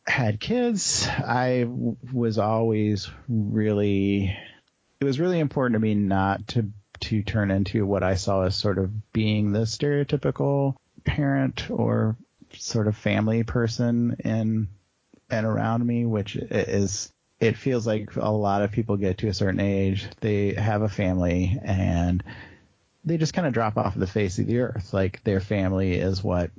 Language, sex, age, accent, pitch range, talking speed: English, male, 30-49, American, 95-120 Hz, 160 wpm